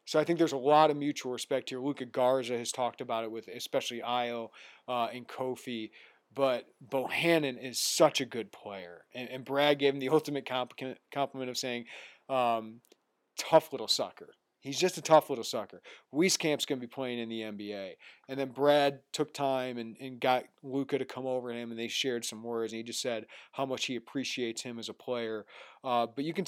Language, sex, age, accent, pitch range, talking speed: English, male, 40-59, American, 115-145 Hz, 210 wpm